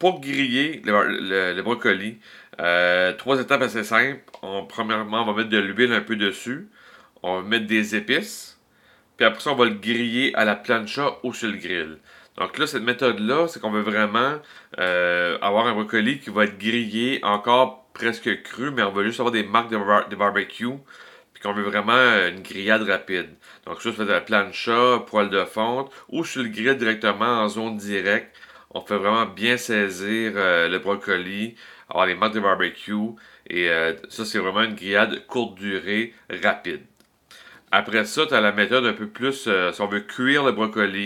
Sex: male